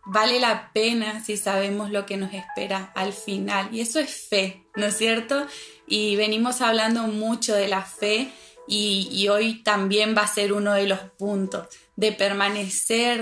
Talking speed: 170 wpm